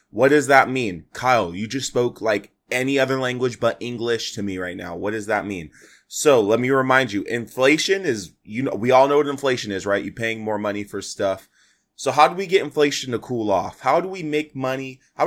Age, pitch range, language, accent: 20-39, 105-140 Hz, English, American